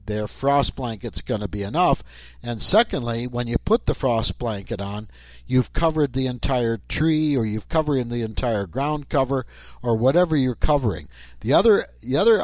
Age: 60-79